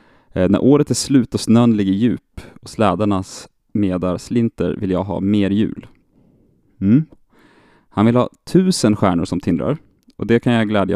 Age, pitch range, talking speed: 30-49, 95-120 Hz, 165 wpm